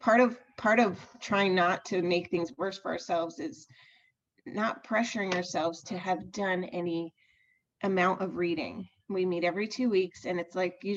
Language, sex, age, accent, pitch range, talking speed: English, female, 30-49, American, 175-235 Hz, 175 wpm